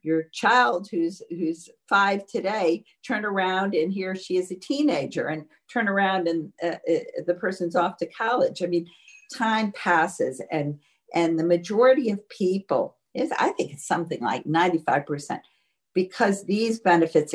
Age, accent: 50-69, American